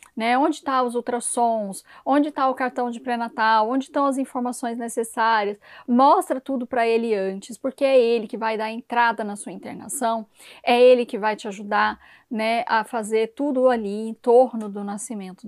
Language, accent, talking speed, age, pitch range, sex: Portuguese, Brazilian, 180 wpm, 10-29, 220-255 Hz, female